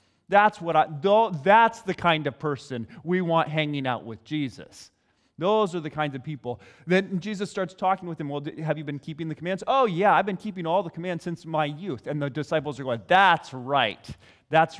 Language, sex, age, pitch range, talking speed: English, male, 30-49, 115-170 Hz, 210 wpm